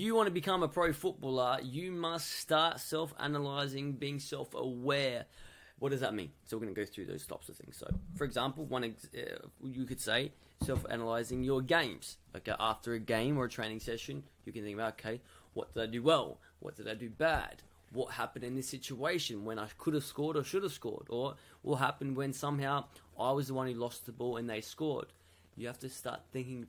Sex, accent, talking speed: male, Australian, 215 wpm